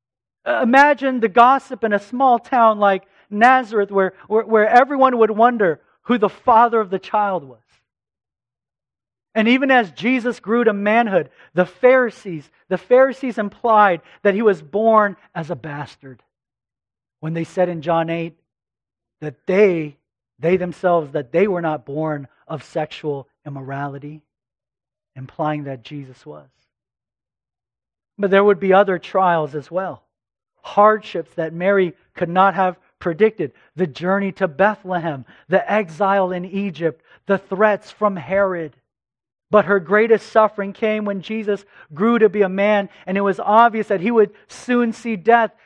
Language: English